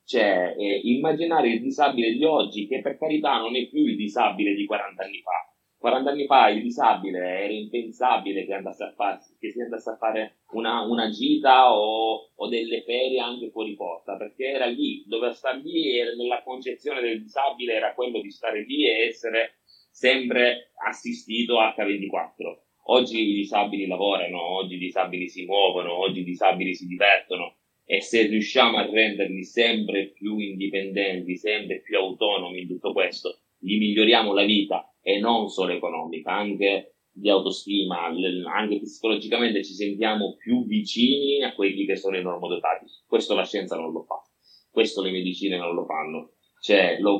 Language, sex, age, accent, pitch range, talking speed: Italian, male, 30-49, native, 100-125 Hz, 165 wpm